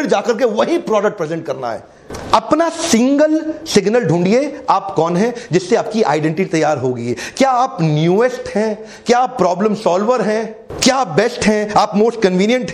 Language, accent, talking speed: Hindi, native, 160 wpm